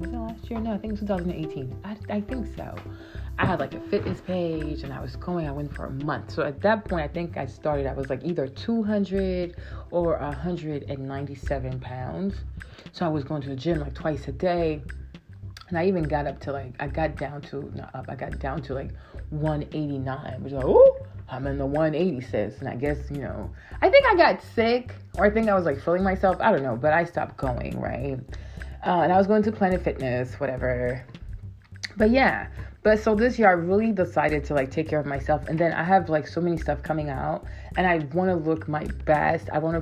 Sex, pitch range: female, 135-185 Hz